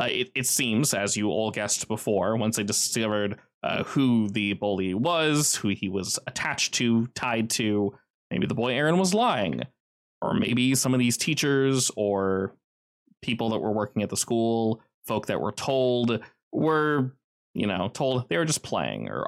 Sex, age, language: male, 20-39, English